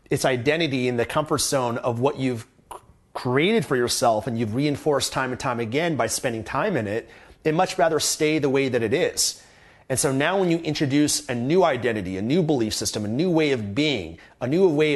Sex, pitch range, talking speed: male, 120-155 Hz, 215 wpm